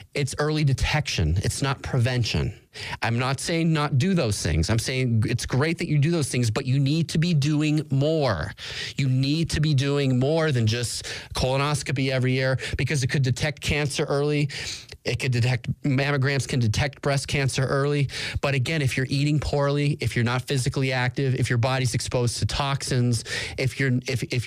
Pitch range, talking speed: 115-140 Hz, 185 wpm